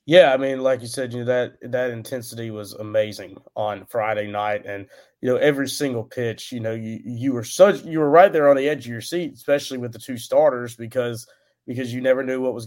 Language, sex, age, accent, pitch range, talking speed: English, male, 30-49, American, 115-130 Hz, 240 wpm